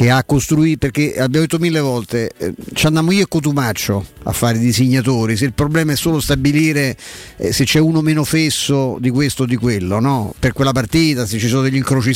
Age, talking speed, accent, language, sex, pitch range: 50-69, 215 wpm, native, Italian, male, 130-165 Hz